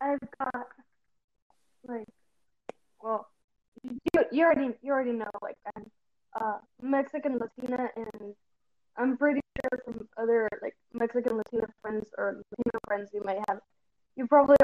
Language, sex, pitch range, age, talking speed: English, female, 220-275 Hz, 10-29, 125 wpm